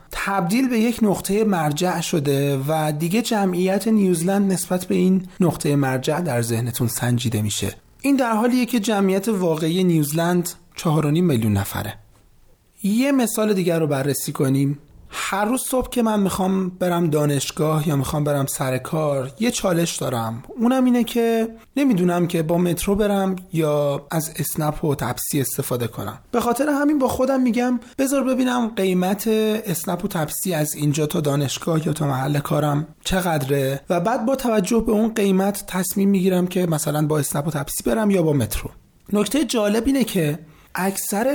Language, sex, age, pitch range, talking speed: Persian, male, 30-49, 150-215 Hz, 160 wpm